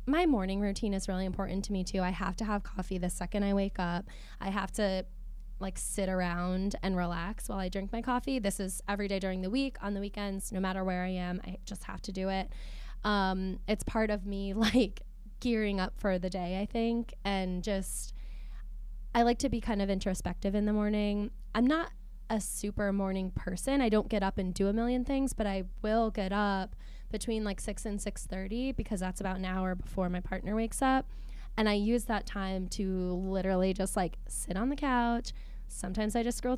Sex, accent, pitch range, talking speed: female, American, 190-230 Hz, 215 wpm